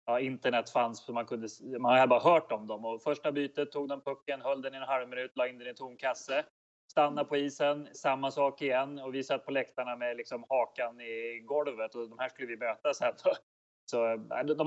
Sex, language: male, English